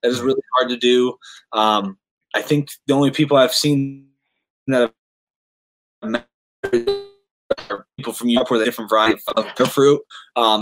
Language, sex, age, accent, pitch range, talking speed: English, male, 20-39, American, 115-140 Hz, 165 wpm